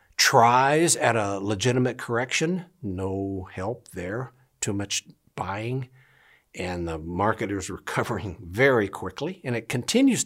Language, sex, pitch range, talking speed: English, male, 100-125 Hz, 125 wpm